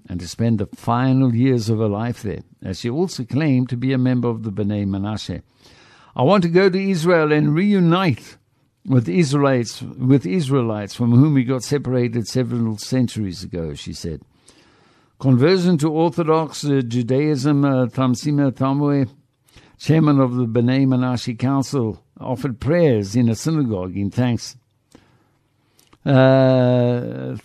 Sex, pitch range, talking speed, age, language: male, 115-145 Hz, 145 wpm, 60-79, English